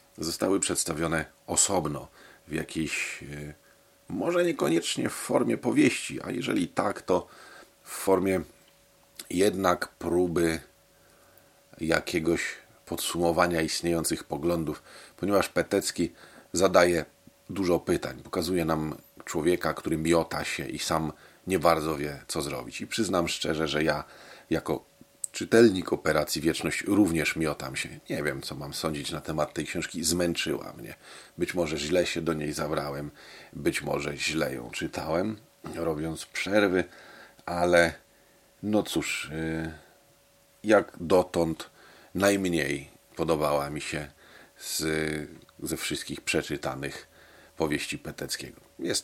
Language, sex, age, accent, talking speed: Polish, male, 40-59, native, 115 wpm